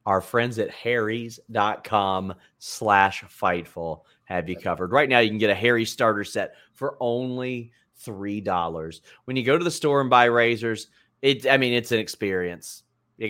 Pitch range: 105-140 Hz